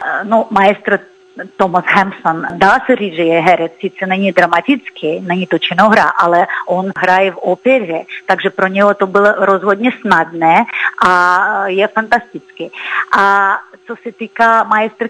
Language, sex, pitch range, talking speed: Czech, female, 195-260 Hz, 145 wpm